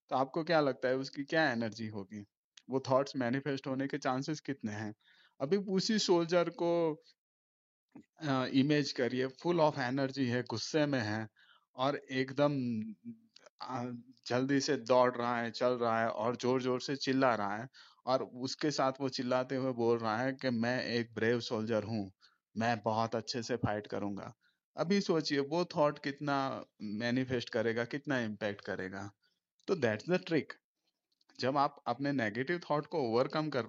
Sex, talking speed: male, 160 wpm